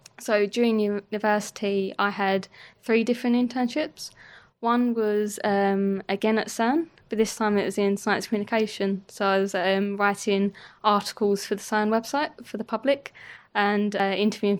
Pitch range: 195-215 Hz